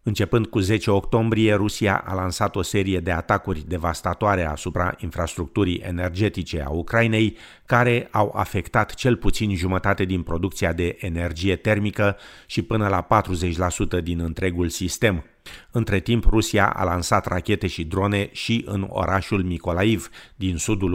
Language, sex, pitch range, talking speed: Romanian, male, 90-105 Hz, 140 wpm